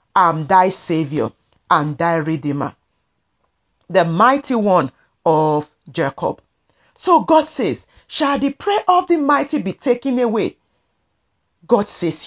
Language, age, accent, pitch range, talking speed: English, 40-59, Nigerian, 180-290 Hz, 125 wpm